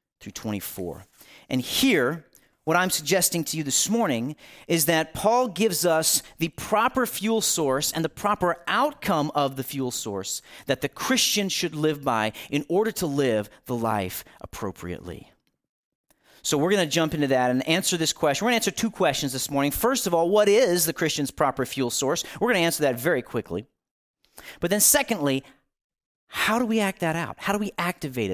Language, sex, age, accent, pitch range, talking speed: English, male, 40-59, American, 140-205 Hz, 190 wpm